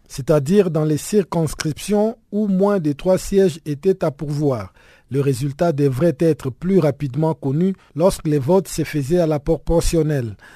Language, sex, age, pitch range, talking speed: French, male, 50-69, 140-180 Hz, 155 wpm